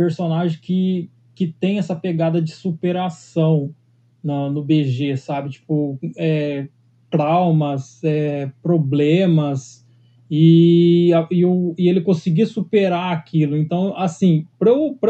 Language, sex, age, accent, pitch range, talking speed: Portuguese, male, 20-39, Brazilian, 150-180 Hz, 100 wpm